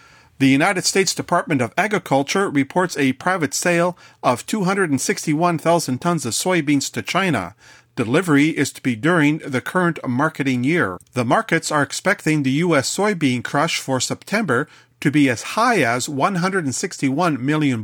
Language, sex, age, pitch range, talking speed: English, male, 40-59, 130-170 Hz, 145 wpm